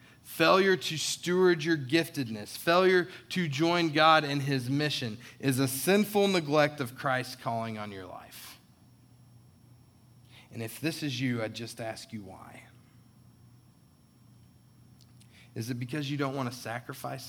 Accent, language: American, English